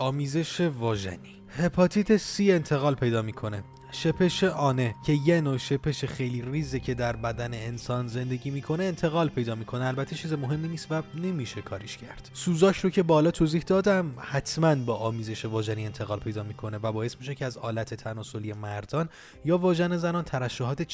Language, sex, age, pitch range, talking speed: Persian, male, 20-39, 115-155 Hz, 165 wpm